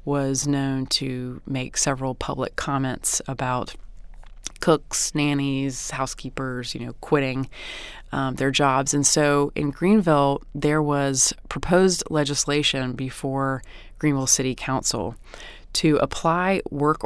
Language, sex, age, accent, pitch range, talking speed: English, female, 30-49, American, 130-145 Hz, 115 wpm